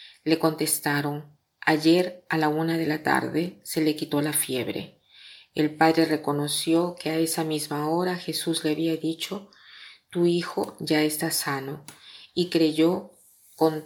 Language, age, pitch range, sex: Spanish, 40-59, 155-180 Hz, female